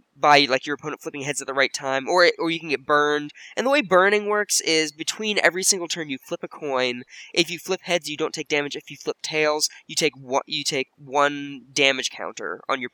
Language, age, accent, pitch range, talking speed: English, 10-29, American, 140-175 Hz, 240 wpm